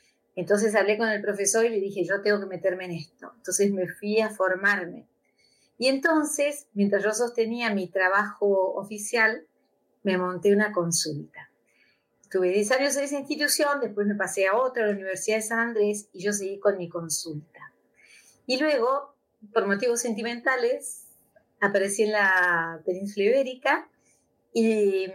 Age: 30-49